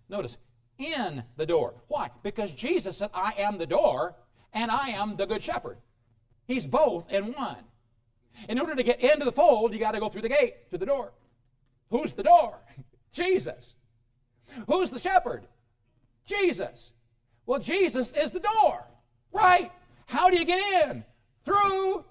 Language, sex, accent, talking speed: English, male, American, 160 wpm